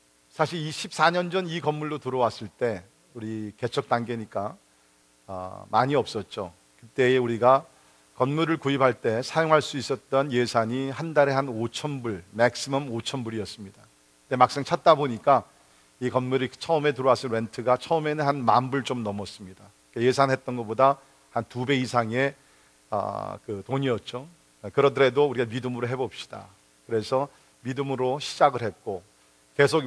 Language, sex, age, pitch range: Korean, male, 50-69, 110-140 Hz